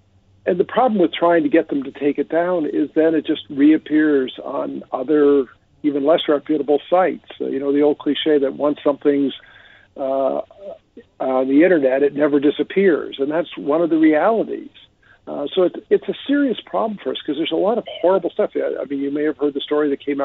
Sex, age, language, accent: male, 50-69, English, American